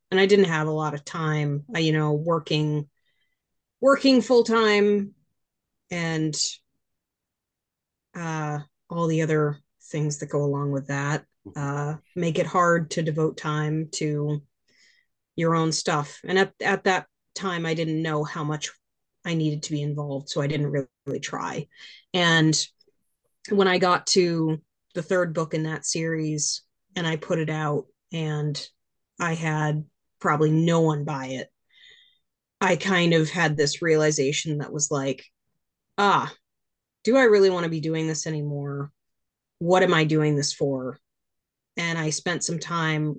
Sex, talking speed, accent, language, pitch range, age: female, 155 wpm, American, English, 145-170 Hz, 30-49